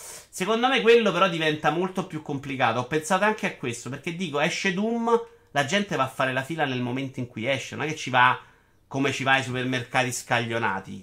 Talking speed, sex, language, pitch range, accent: 220 wpm, male, Italian, 115-150 Hz, native